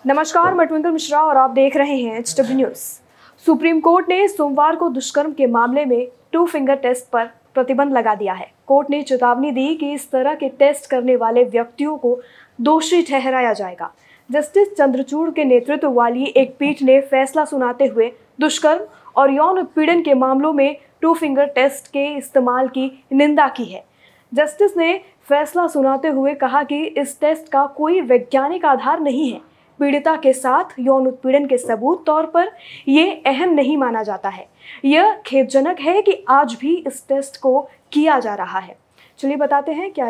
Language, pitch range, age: Hindi, 255-295 Hz, 20-39